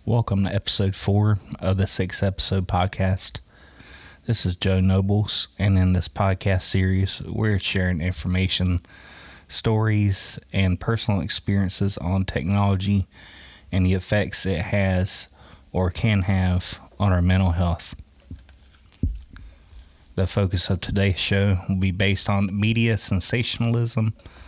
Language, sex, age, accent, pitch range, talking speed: English, male, 20-39, American, 85-100 Hz, 125 wpm